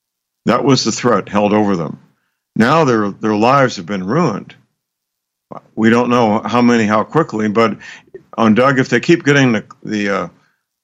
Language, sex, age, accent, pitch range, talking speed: English, male, 60-79, American, 95-120 Hz, 170 wpm